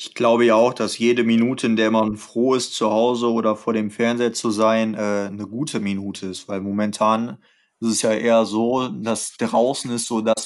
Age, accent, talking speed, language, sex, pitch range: 20-39, German, 205 wpm, German, male, 110-120 Hz